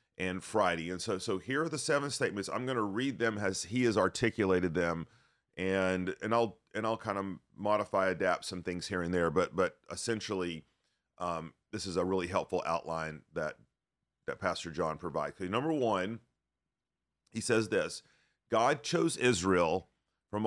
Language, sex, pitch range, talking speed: English, male, 95-115 Hz, 170 wpm